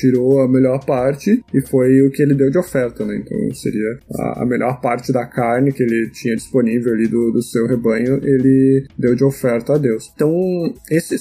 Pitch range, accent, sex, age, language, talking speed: 125-145 Hz, Brazilian, male, 20-39, Portuguese, 205 wpm